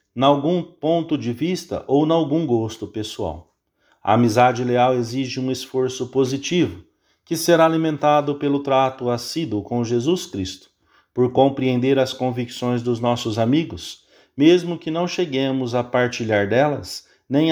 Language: English